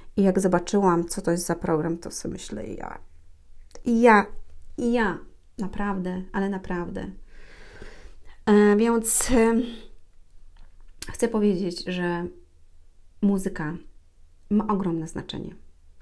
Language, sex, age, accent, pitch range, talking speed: Polish, female, 30-49, native, 150-205 Hz, 105 wpm